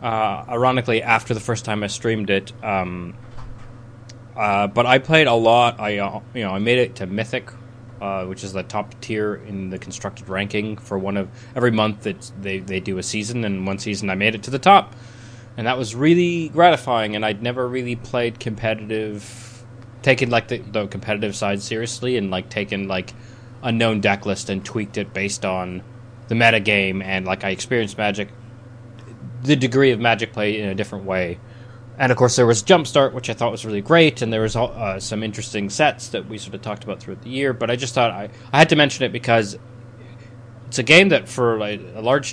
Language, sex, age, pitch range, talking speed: English, male, 20-39, 105-120 Hz, 210 wpm